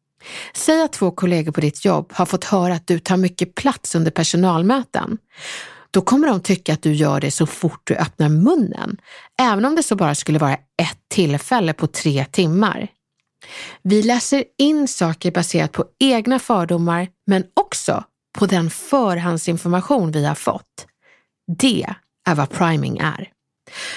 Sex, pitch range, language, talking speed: female, 165-235 Hz, Swedish, 160 wpm